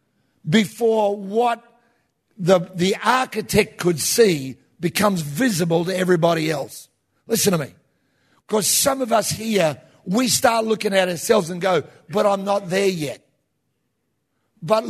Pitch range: 165-220 Hz